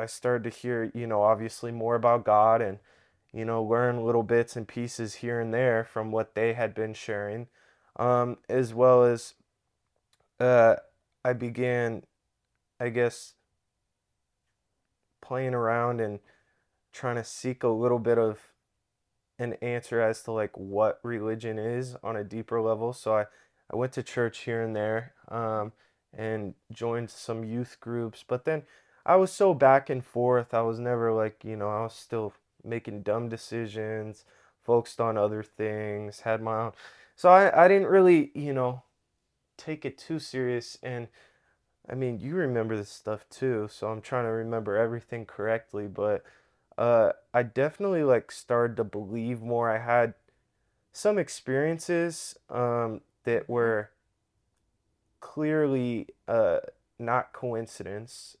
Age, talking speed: 20-39, 150 wpm